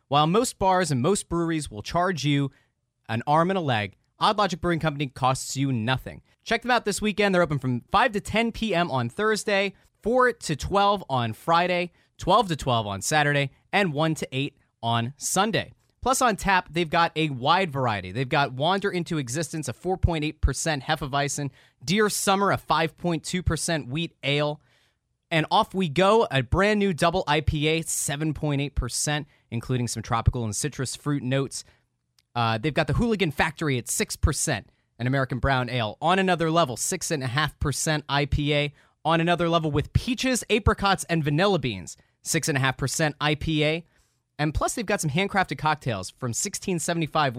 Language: English